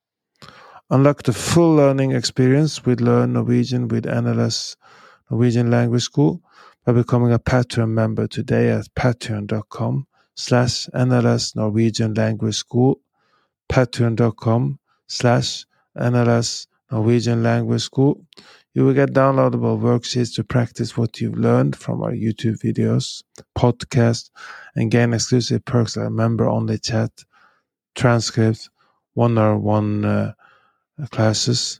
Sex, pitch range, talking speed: male, 115-125 Hz, 110 wpm